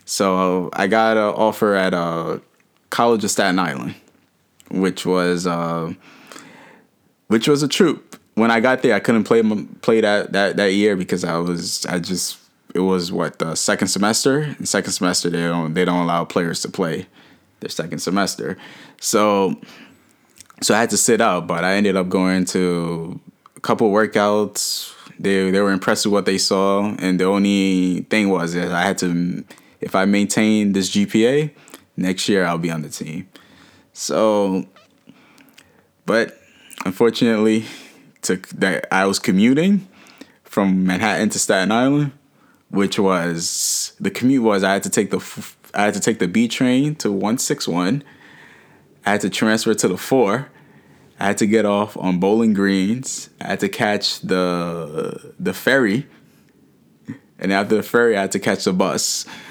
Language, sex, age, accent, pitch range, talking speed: English, male, 10-29, American, 90-110 Hz, 165 wpm